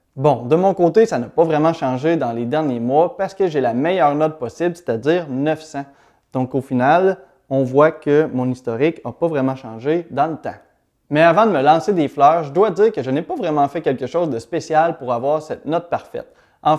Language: French